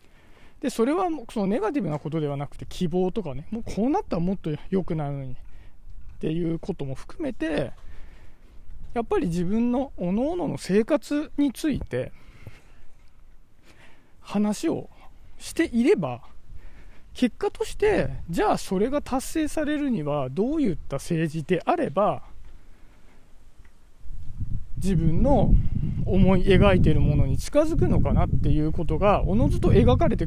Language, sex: Japanese, male